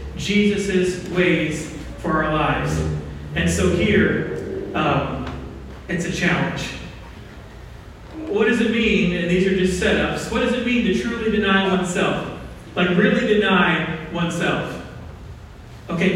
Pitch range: 165-205 Hz